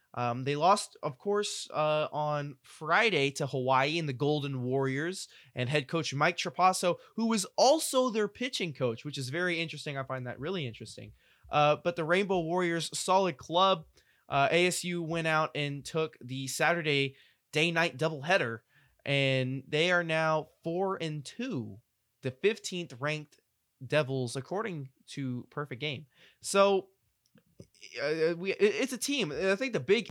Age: 20-39